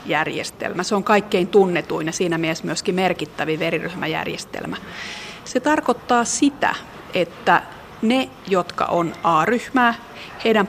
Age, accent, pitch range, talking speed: 30-49, native, 170-215 Hz, 105 wpm